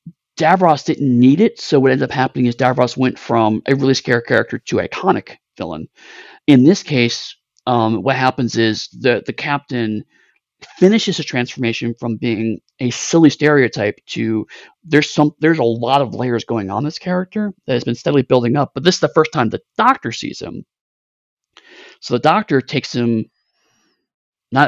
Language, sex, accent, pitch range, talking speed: English, male, American, 115-140 Hz, 175 wpm